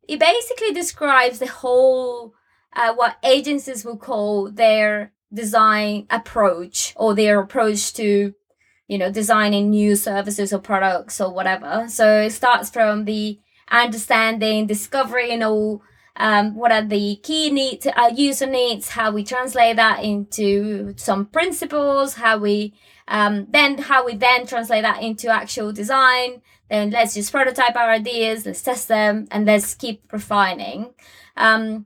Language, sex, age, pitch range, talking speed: English, female, 20-39, 210-255 Hz, 145 wpm